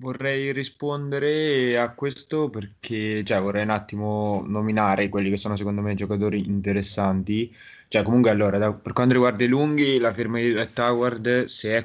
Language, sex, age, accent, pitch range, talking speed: Italian, male, 20-39, native, 105-120 Hz, 165 wpm